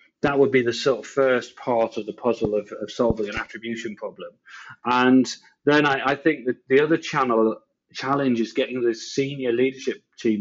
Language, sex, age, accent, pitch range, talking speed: English, male, 40-59, British, 115-130 Hz, 190 wpm